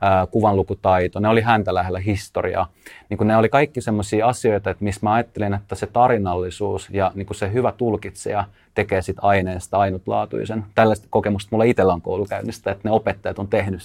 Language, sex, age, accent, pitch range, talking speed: Finnish, male, 30-49, native, 95-110 Hz, 165 wpm